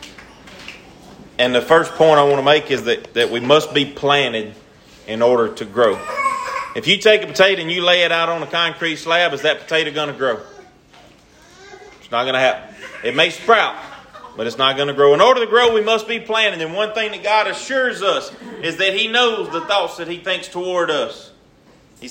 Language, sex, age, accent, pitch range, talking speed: English, male, 30-49, American, 140-200 Hz, 215 wpm